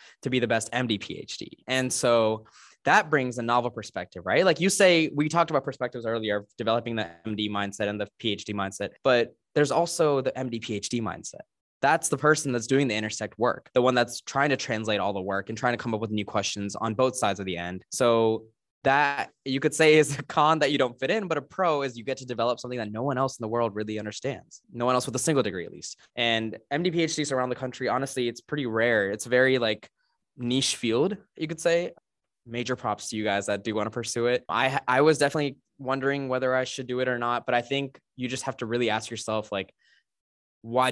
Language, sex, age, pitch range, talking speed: English, male, 10-29, 110-130 Hz, 235 wpm